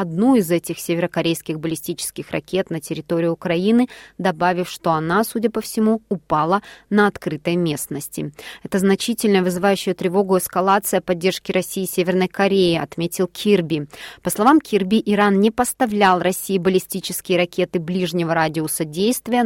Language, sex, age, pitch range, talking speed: Russian, female, 20-39, 175-205 Hz, 135 wpm